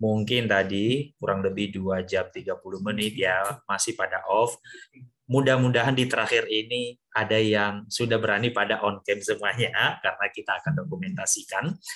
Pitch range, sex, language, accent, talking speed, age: 110-150 Hz, male, Indonesian, native, 140 wpm, 20-39